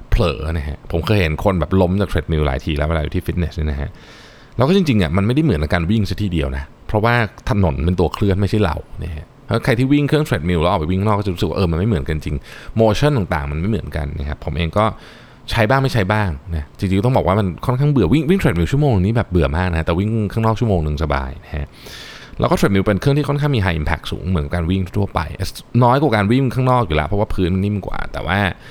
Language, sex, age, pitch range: Thai, male, 20-39, 80-115 Hz